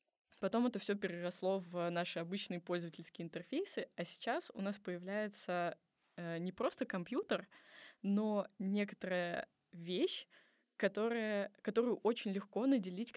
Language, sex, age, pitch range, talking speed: Russian, female, 20-39, 170-205 Hz, 115 wpm